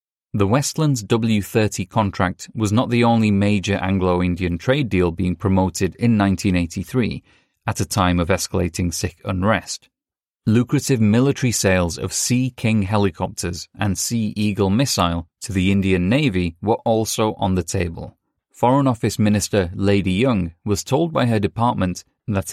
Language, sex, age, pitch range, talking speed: English, male, 30-49, 95-120 Hz, 145 wpm